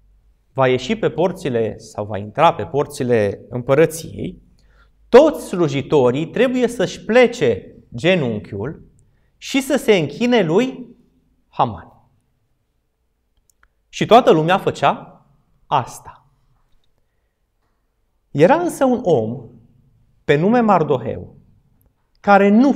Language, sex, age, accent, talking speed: Romanian, male, 30-49, native, 95 wpm